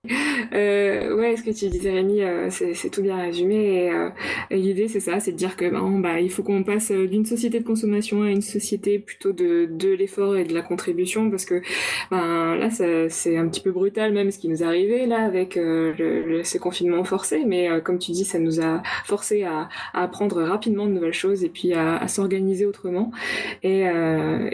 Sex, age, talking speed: female, 20-39, 225 wpm